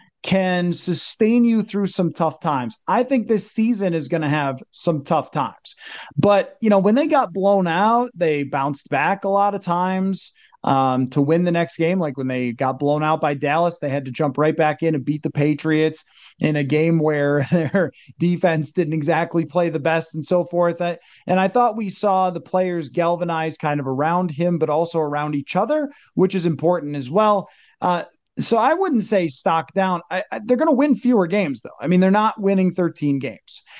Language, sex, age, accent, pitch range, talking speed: English, male, 30-49, American, 145-190 Hz, 205 wpm